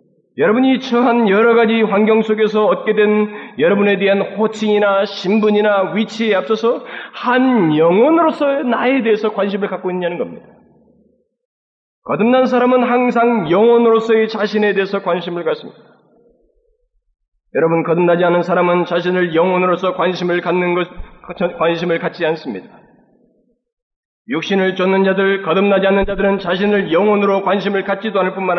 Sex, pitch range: male, 180-250 Hz